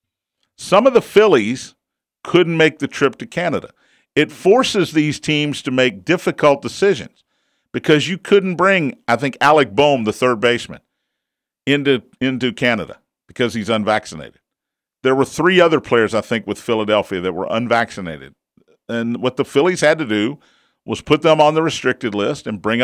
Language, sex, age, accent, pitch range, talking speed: English, male, 50-69, American, 120-170 Hz, 165 wpm